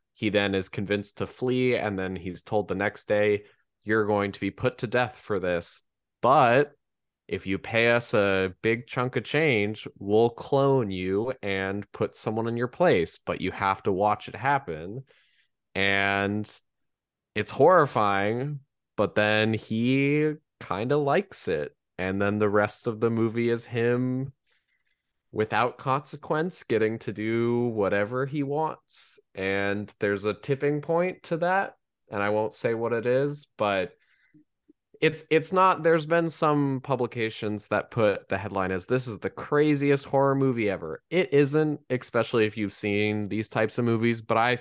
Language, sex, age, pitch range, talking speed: English, male, 20-39, 100-135 Hz, 165 wpm